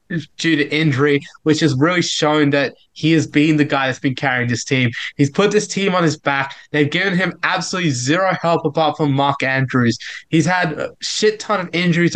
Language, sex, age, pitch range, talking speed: English, male, 20-39, 145-195 Hz, 205 wpm